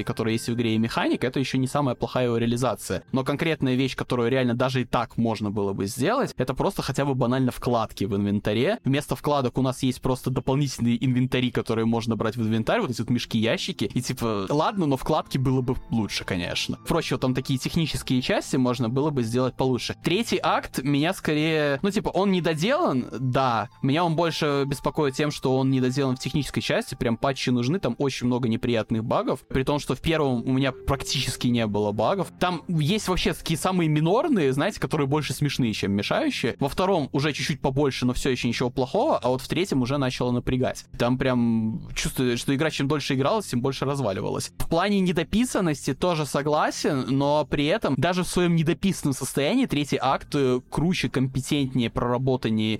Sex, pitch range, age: male, 125-150 Hz, 20-39